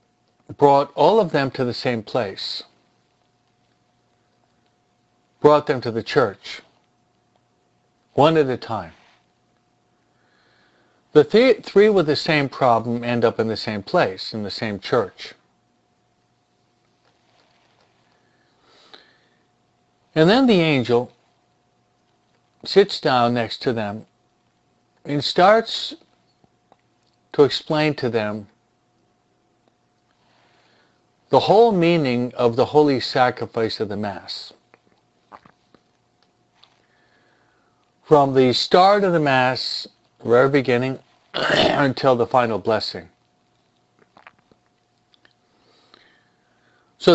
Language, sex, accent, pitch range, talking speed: English, male, American, 120-155 Hz, 90 wpm